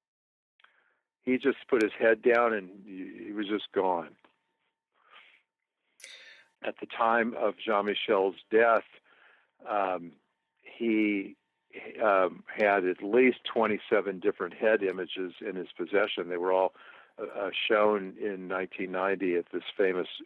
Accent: American